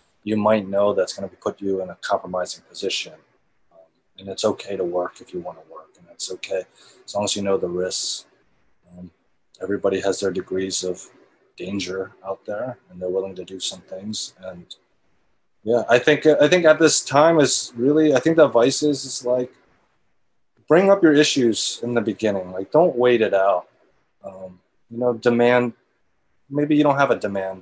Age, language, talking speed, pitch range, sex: 30-49, English, 195 wpm, 95-125 Hz, male